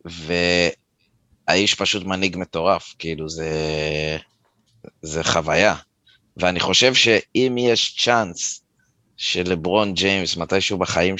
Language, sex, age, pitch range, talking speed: Hebrew, male, 20-39, 85-100 Hz, 90 wpm